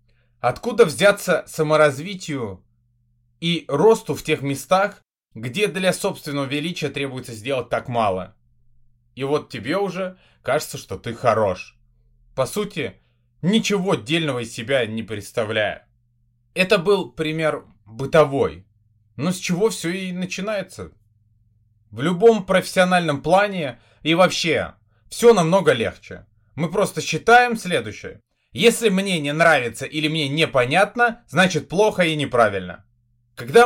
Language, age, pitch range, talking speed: Russian, 20-39, 120-180 Hz, 120 wpm